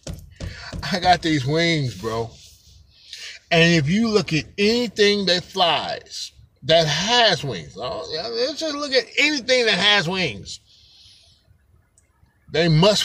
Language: English